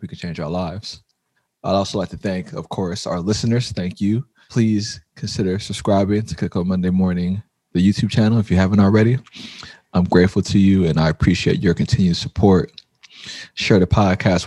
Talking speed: 180 wpm